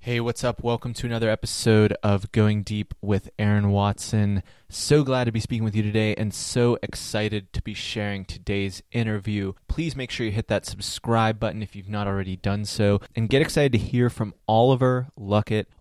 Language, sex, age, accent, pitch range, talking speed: English, male, 20-39, American, 100-120 Hz, 195 wpm